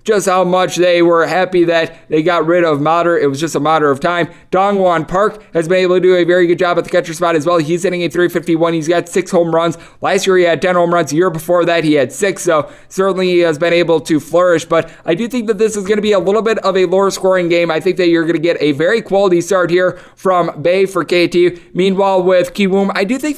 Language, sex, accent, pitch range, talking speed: English, male, American, 170-210 Hz, 275 wpm